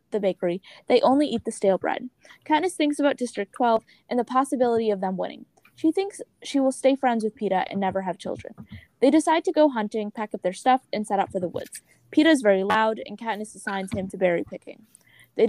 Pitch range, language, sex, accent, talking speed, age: 190-260 Hz, English, female, American, 225 wpm, 20-39